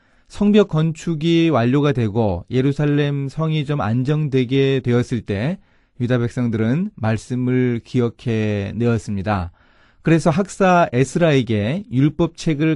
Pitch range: 115-155 Hz